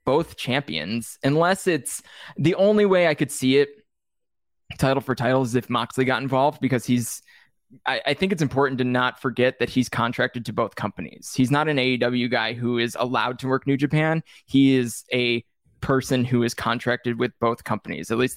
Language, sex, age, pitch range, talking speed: English, male, 20-39, 115-135 Hz, 195 wpm